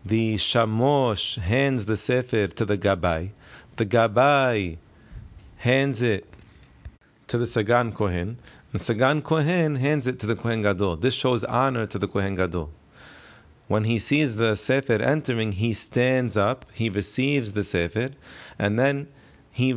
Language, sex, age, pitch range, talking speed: English, male, 40-59, 105-130 Hz, 145 wpm